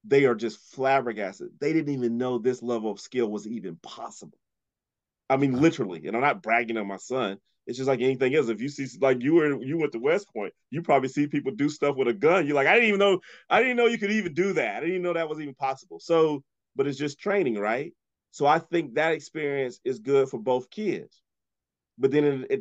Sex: male